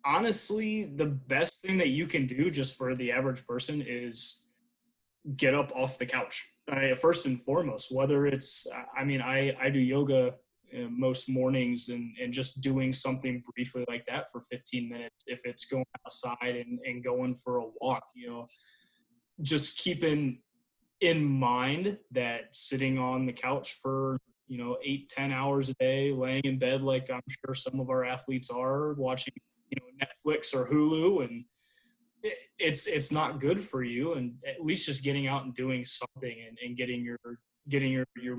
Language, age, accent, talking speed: English, 20-39, American, 170 wpm